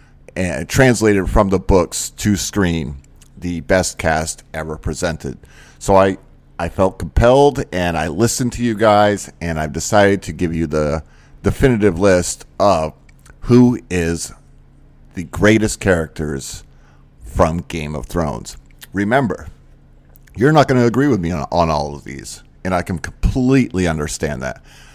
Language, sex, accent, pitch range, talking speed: English, male, American, 80-105 Hz, 145 wpm